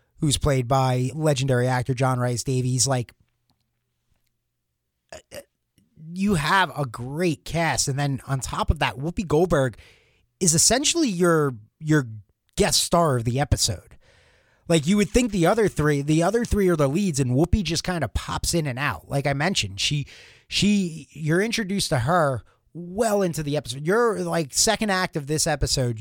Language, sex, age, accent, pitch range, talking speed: English, male, 30-49, American, 125-155 Hz, 170 wpm